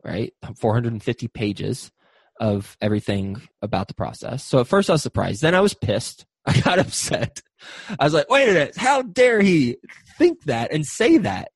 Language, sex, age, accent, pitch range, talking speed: English, male, 20-39, American, 115-150 Hz, 180 wpm